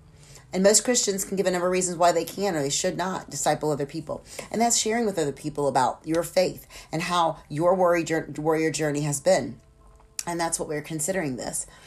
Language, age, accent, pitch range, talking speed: English, 40-59, American, 150-190 Hz, 205 wpm